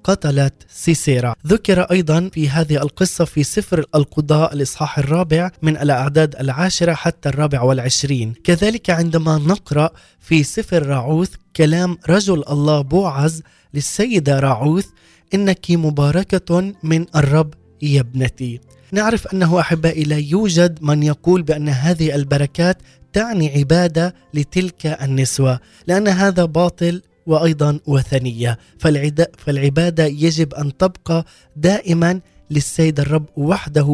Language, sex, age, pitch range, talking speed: Arabic, male, 20-39, 145-180 Hz, 110 wpm